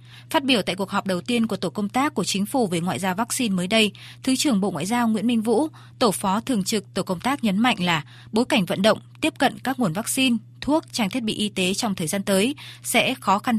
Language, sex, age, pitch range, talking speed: Vietnamese, female, 20-39, 185-245 Hz, 265 wpm